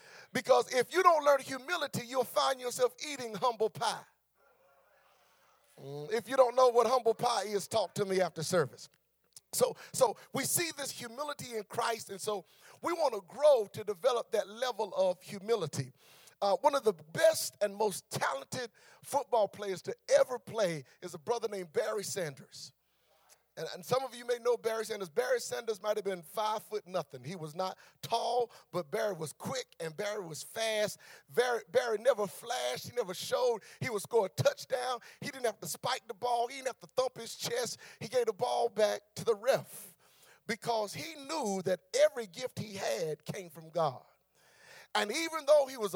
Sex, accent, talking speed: male, American, 185 wpm